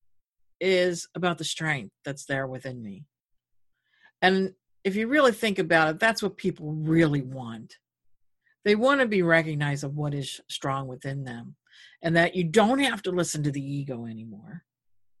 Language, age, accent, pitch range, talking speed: English, 50-69, American, 130-185 Hz, 160 wpm